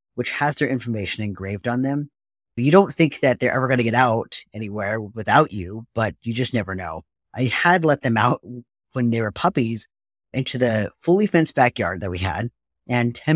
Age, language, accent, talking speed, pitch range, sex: 30-49, English, American, 200 wpm, 105-135 Hz, male